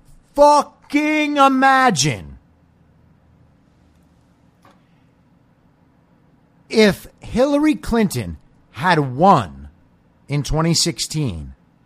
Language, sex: English, male